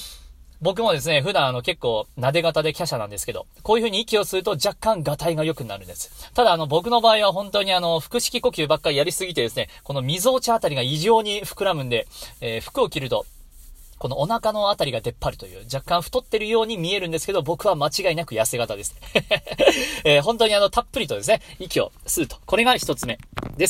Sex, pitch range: male, 140-230 Hz